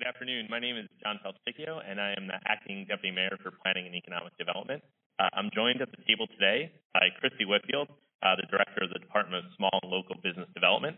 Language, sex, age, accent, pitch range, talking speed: English, male, 30-49, American, 95-125 Hz, 225 wpm